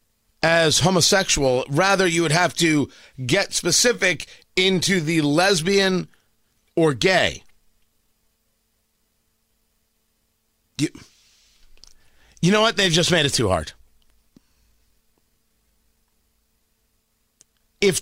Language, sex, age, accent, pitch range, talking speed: English, male, 40-59, American, 145-205 Hz, 85 wpm